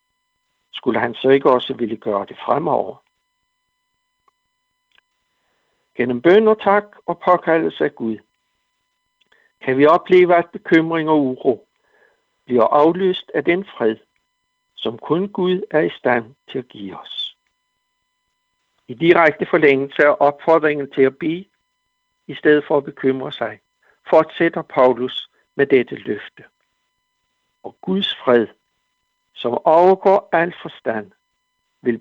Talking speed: 125 wpm